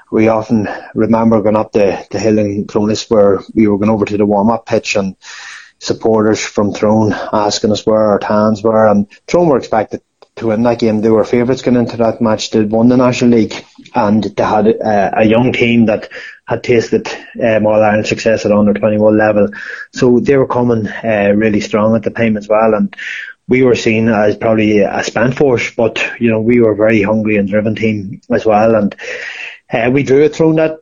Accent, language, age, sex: Irish, English, 20-39, male